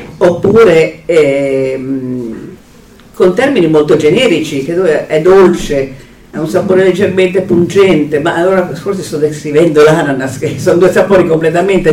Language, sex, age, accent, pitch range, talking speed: Italian, female, 50-69, native, 150-190 Hz, 125 wpm